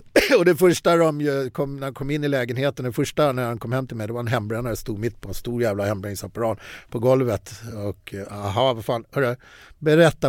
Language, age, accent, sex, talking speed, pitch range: Swedish, 50-69, native, male, 225 wpm, 100-130 Hz